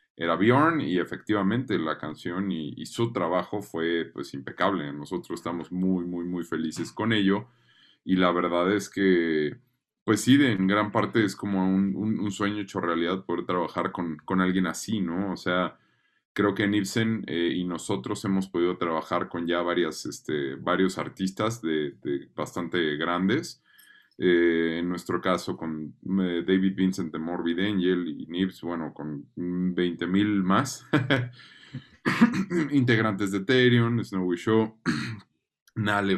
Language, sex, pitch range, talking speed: Spanish, male, 85-110 Hz, 150 wpm